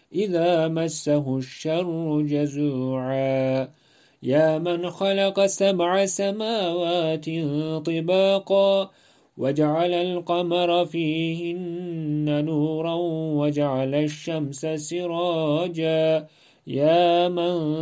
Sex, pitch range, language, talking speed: male, 150-180 Hz, Turkish, 65 wpm